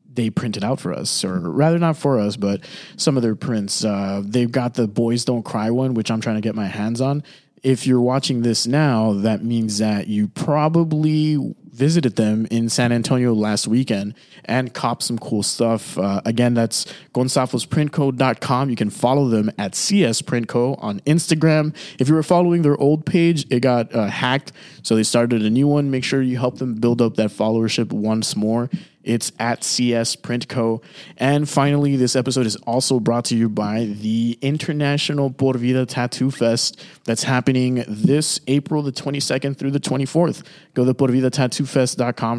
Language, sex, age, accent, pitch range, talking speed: English, male, 20-39, American, 115-140 Hz, 180 wpm